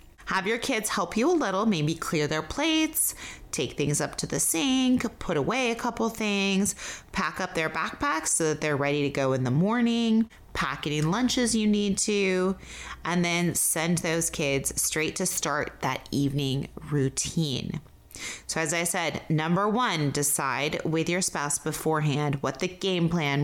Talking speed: 170 wpm